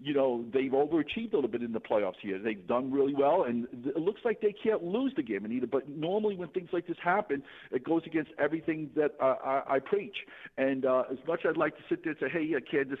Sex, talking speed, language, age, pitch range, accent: male, 255 wpm, English, 50-69, 130-180 Hz, American